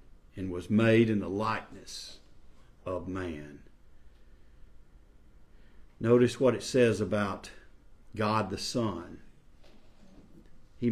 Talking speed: 90 wpm